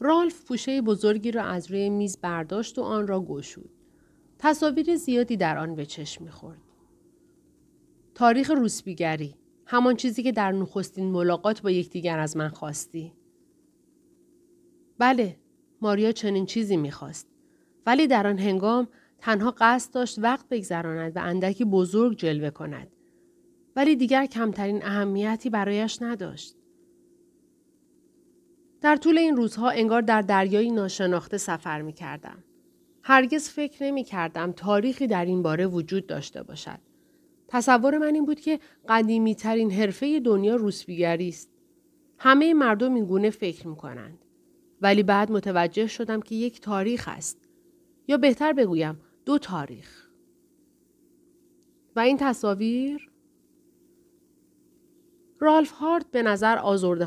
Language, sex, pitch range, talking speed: Persian, female, 195-305 Hz, 125 wpm